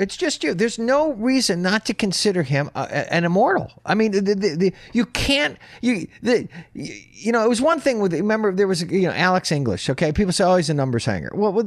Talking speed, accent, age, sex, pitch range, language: 235 wpm, American, 50-69, male, 150-225 Hz, English